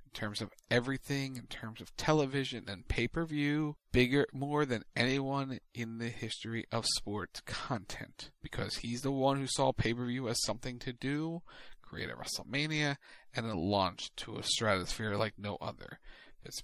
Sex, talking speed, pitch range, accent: male, 155 wpm, 115-145 Hz, American